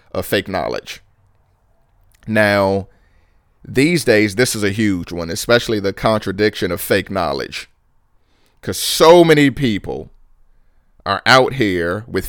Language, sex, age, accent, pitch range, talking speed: English, male, 40-59, American, 100-120 Hz, 120 wpm